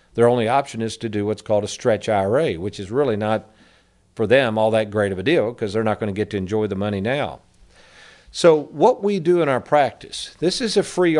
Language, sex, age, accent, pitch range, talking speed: English, male, 50-69, American, 110-155 Hz, 240 wpm